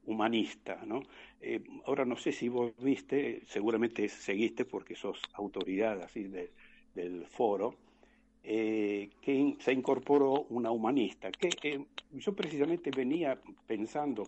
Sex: male